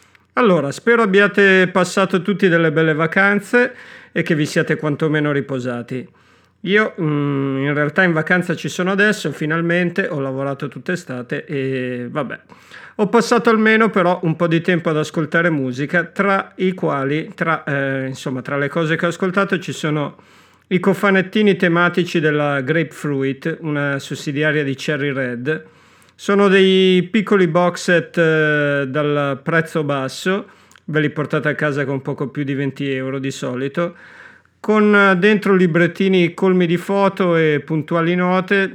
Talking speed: 150 wpm